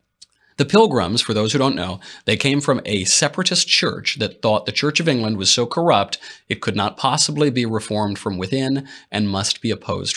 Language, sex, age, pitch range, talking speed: English, male, 30-49, 105-140 Hz, 200 wpm